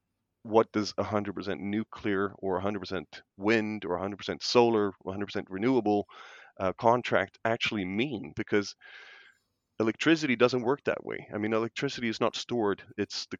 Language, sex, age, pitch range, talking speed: English, male, 30-49, 100-110 Hz, 140 wpm